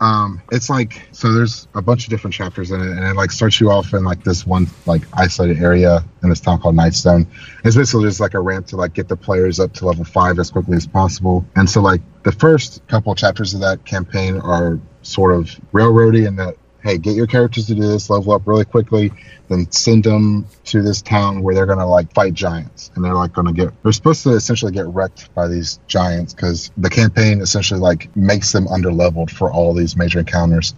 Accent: American